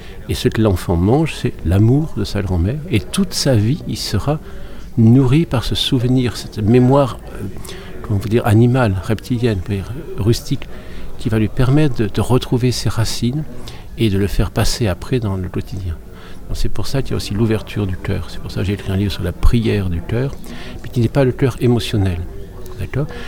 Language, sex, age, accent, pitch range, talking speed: French, male, 50-69, French, 95-120 Hz, 200 wpm